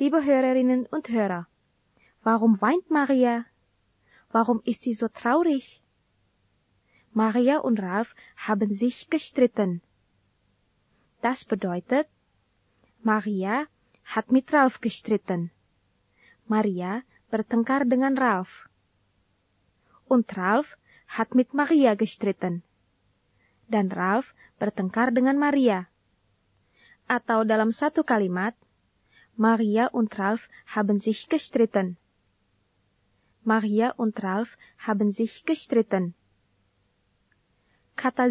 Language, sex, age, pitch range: Indonesian, female, 20-39, 180-255 Hz